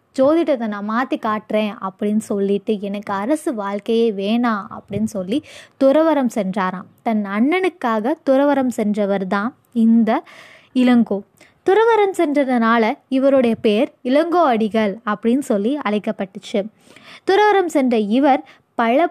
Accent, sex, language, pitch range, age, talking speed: native, female, Tamil, 220-310 Hz, 20-39, 105 wpm